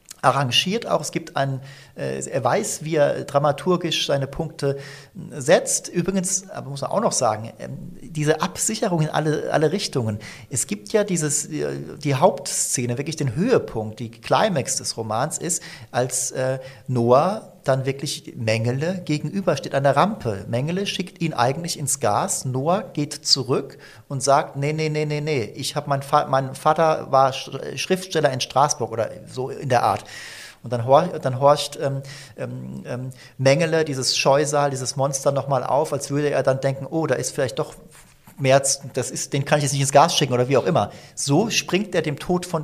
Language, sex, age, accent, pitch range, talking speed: German, male, 40-59, German, 135-170 Hz, 170 wpm